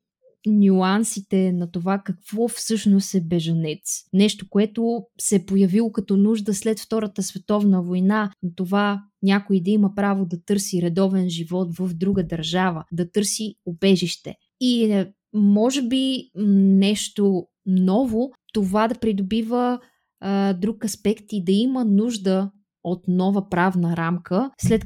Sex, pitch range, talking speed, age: female, 180-220 Hz, 130 wpm, 20-39